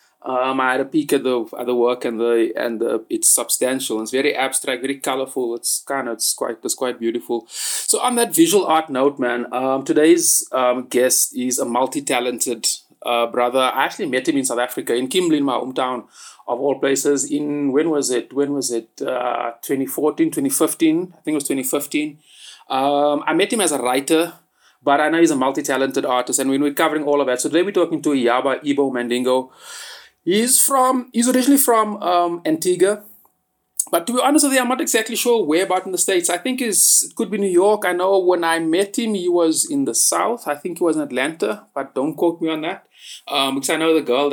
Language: English